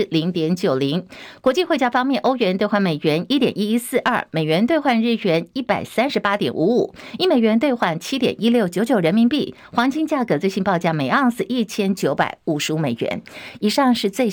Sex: female